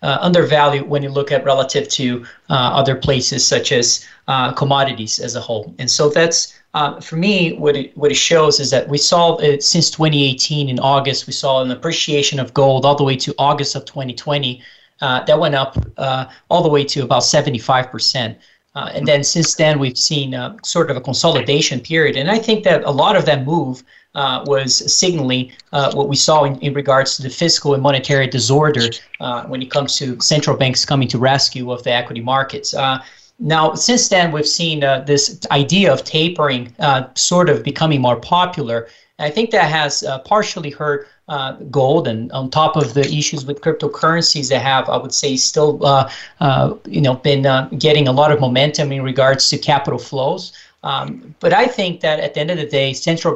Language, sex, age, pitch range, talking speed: English, male, 20-39, 130-150 Hz, 200 wpm